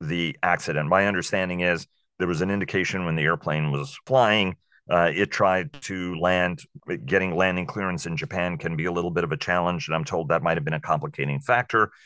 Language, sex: English, male